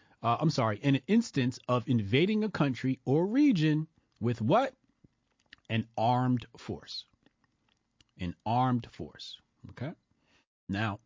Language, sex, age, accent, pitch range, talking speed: English, male, 40-59, American, 105-150 Hz, 120 wpm